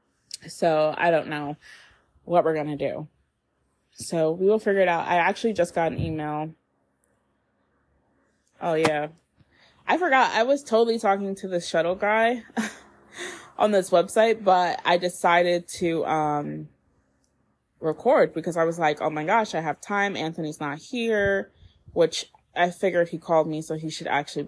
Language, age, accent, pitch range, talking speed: English, 20-39, American, 125-190 Hz, 160 wpm